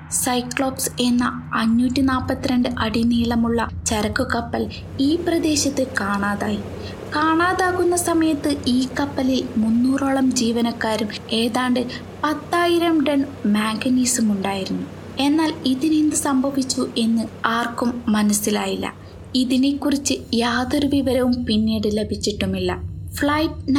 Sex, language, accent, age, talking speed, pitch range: female, Malayalam, native, 20-39, 80 wpm, 215-280 Hz